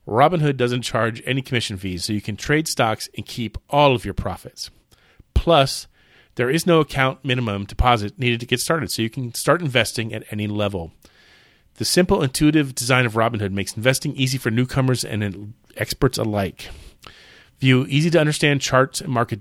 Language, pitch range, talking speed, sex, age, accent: English, 110-145 Hz, 170 wpm, male, 40-59, American